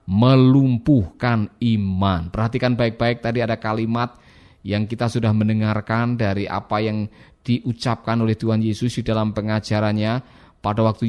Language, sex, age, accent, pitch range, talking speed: Indonesian, male, 20-39, native, 115-190 Hz, 125 wpm